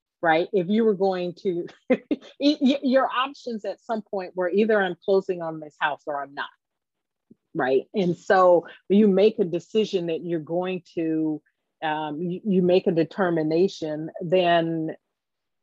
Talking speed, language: 150 wpm, English